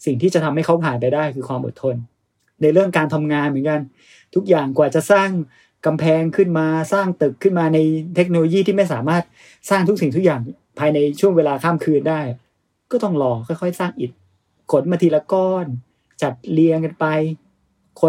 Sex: male